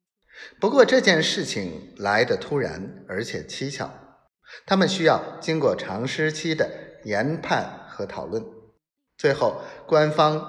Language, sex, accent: Chinese, male, native